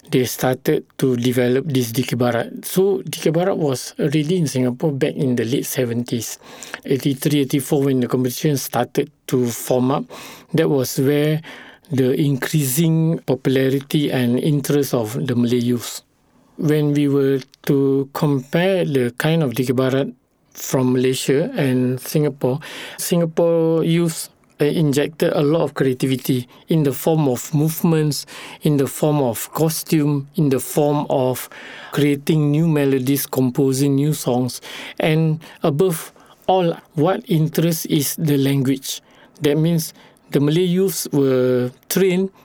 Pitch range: 130-160 Hz